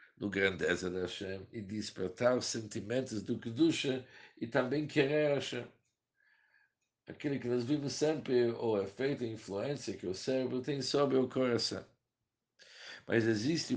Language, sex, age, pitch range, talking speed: Portuguese, male, 60-79, 100-130 Hz, 155 wpm